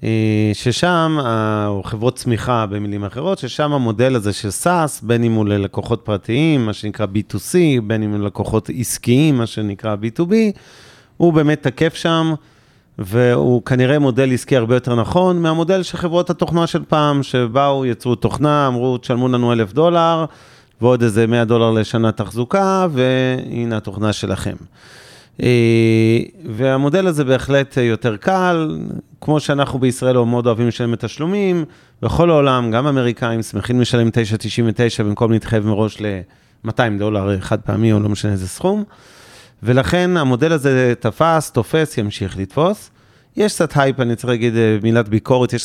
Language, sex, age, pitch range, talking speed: Hebrew, male, 30-49, 110-140 Hz, 145 wpm